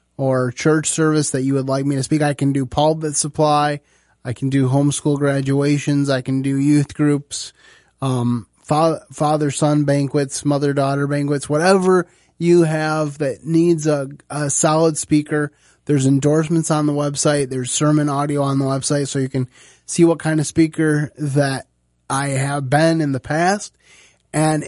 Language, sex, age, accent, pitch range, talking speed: English, male, 20-39, American, 125-155 Hz, 170 wpm